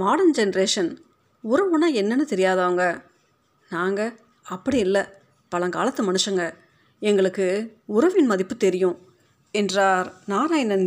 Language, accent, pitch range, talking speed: Tamil, native, 185-245 Hz, 90 wpm